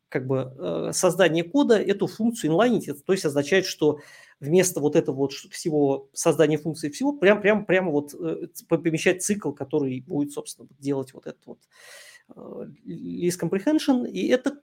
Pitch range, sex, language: 145-180 Hz, male, Russian